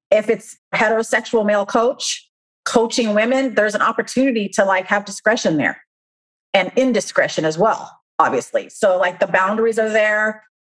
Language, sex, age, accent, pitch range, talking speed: English, female, 40-59, American, 185-225 Hz, 145 wpm